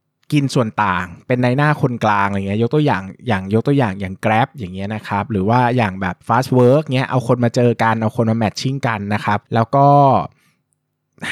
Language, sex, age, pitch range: Thai, male, 20-39, 105-140 Hz